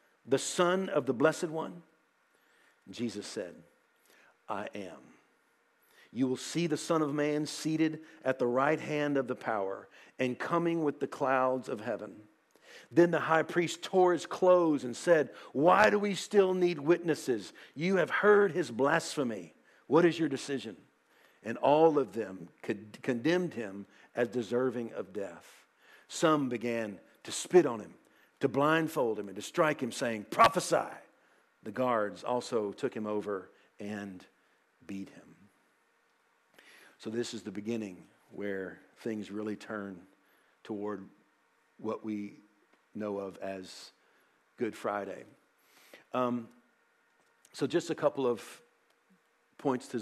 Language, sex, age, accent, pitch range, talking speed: English, male, 50-69, American, 110-160 Hz, 140 wpm